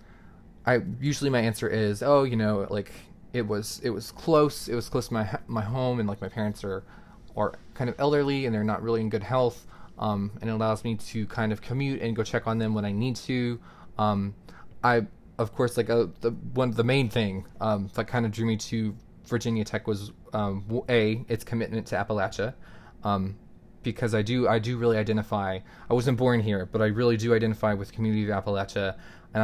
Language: English